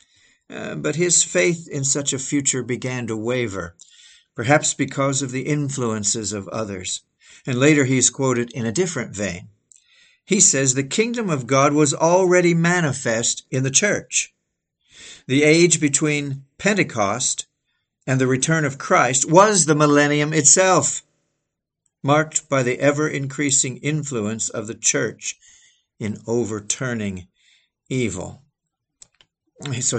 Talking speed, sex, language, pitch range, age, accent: 130 wpm, male, English, 125-150 Hz, 50-69, American